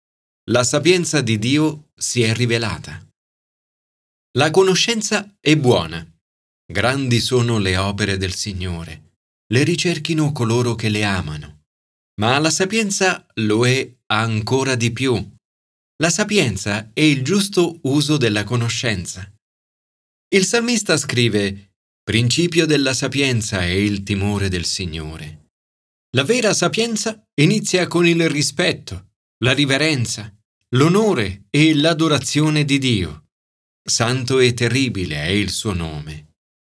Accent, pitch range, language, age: native, 100-160 Hz, Italian, 40-59